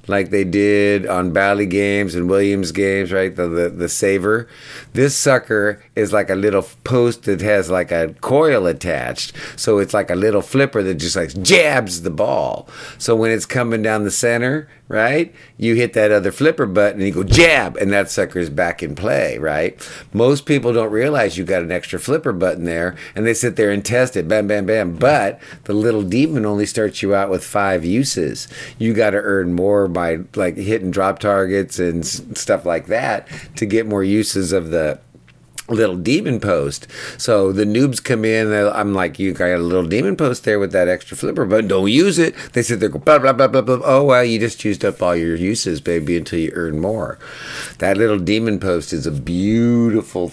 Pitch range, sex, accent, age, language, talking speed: 95-115 Hz, male, American, 50-69, English, 205 wpm